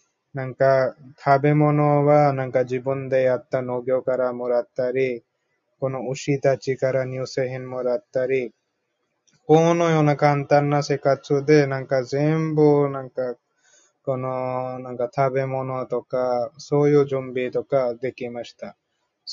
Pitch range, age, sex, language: 130-145 Hz, 20-39, male, Japanese